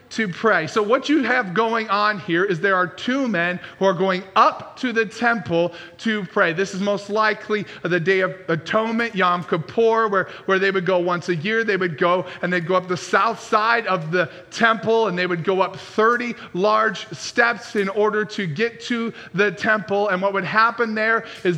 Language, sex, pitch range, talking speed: English, male, 185-225 Hz, 210 wpm